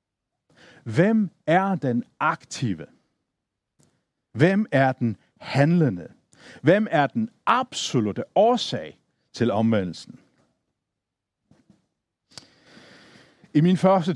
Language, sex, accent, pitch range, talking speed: Danish, male, native, 120-170 Hz, 75 wpm